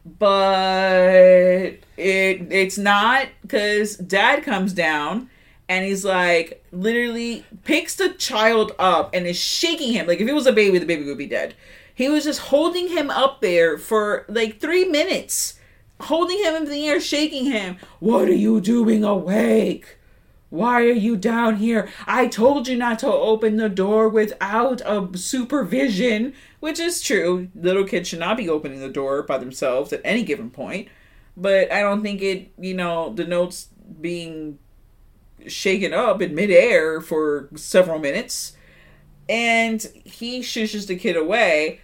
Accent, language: American, English